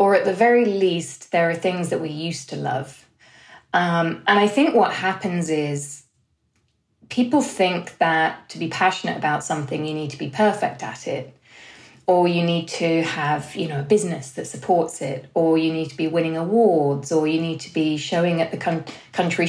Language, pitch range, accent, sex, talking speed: English, 155-210 Hz, British, female, 195 wpm